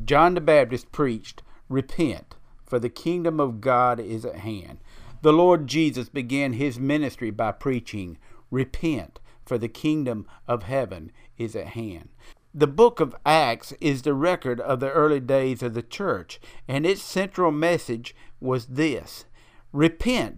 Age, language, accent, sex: 50-69, English, American, male